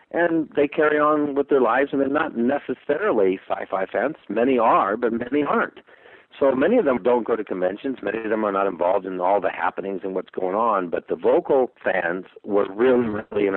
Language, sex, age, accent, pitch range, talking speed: English, male, 50-69, American, 100-135 Hz, 210 wpm